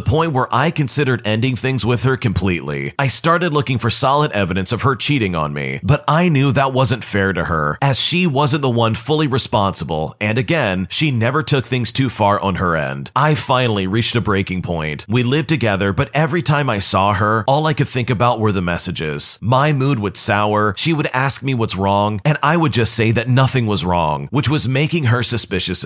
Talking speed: 220 wpm